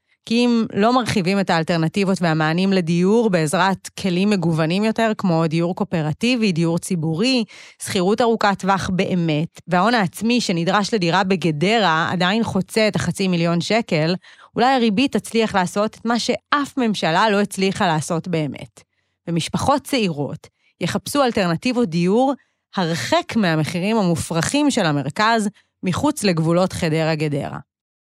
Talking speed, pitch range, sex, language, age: 120 wpm, 175-225 Hz, female, Hebrew, 30-49